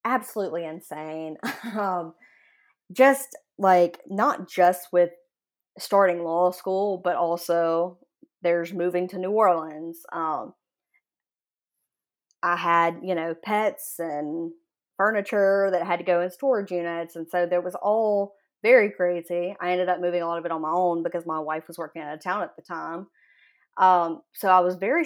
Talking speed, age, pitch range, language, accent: 160 wpm, 20-39, 170-210 Hz, English, American